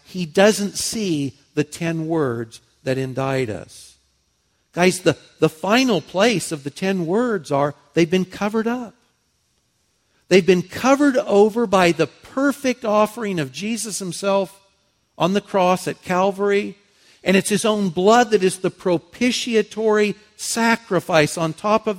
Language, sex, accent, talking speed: English, male, American, 140 wpm